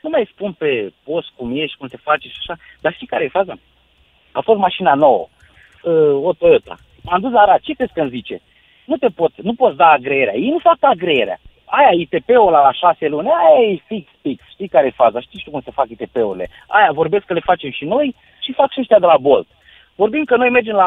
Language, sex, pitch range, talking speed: Romanian, male, 175-275 Hz, 235 wpm